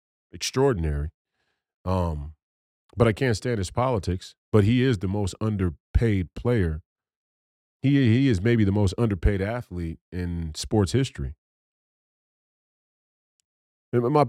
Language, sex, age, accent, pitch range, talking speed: English, male, 40-59, American, 80-110 Hz, 115 wpm